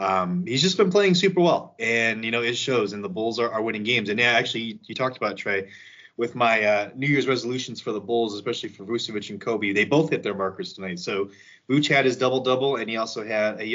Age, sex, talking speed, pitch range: 20-39, male, 255 wpm, 100-130 Hz